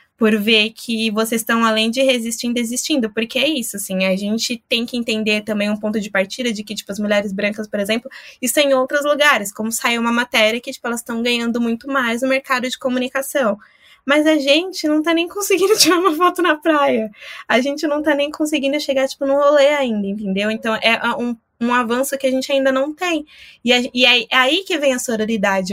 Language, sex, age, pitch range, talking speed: Portuguese, female, 20-39, 215-275 Hz, 220 wpm